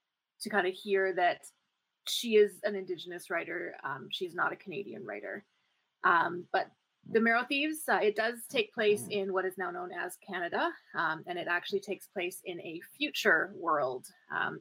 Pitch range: 185-250 Hz